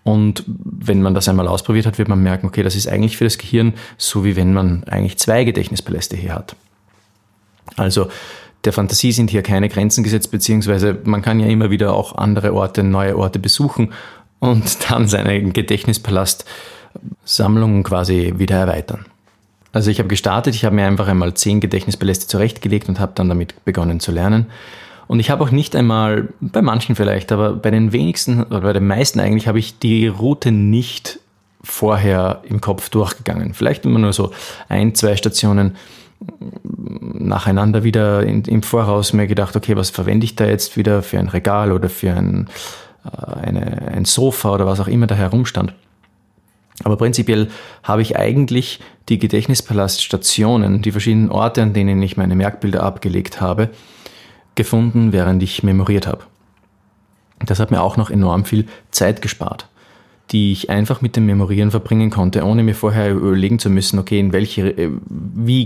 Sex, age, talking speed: male, 30-49, 170 wpm